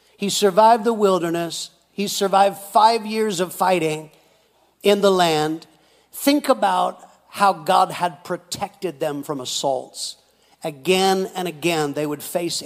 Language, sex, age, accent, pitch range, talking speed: English, male, 50-69, American, 160-200 Hz, 135 wpm